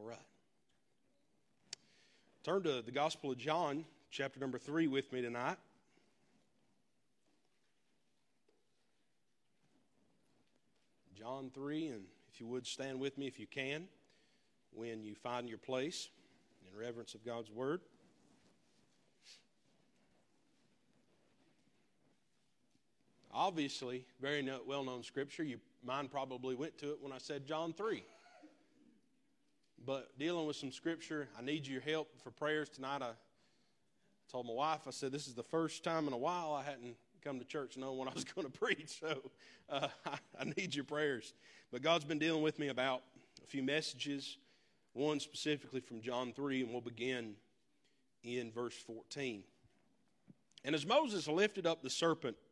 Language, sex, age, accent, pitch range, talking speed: English, male, 40-59, American, 125-155 Hz, 140 wpm